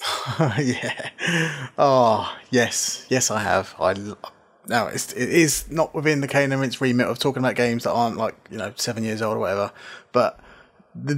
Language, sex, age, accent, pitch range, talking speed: English, male, 20-39, British, 120-145 Hz, 190 wpm